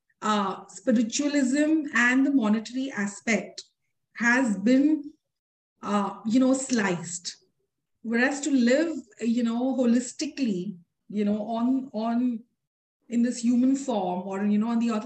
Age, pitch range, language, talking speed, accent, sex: 30-49, 210-275 Hz, English, 130 wpm, Indian, female